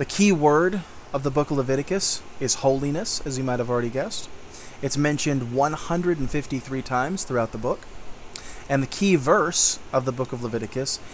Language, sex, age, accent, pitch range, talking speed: English, male, 20-39, American, 120-145 Hz, 170 wpm